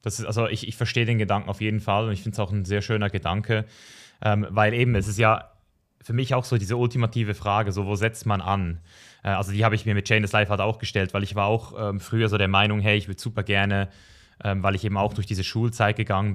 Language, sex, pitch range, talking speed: German, male, 100-120 Hz, 270 wpm